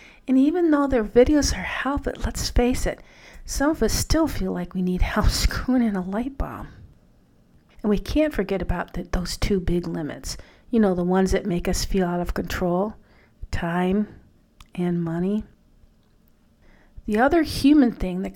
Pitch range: 175-230 Hz